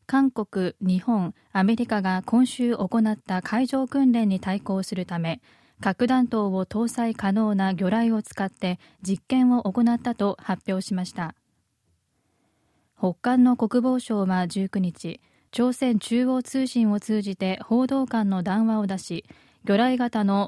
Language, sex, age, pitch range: Japanese, female, 20-39, 190-235 Hz